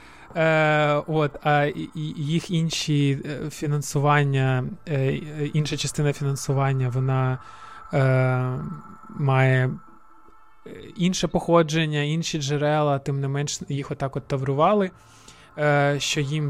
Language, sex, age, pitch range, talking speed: Ukrainian, male, 20-39, 135-160 Hz, 80 wpm